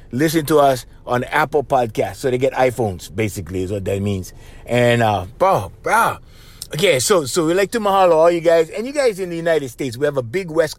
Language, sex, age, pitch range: English, male, 30-49, 115-160 Hz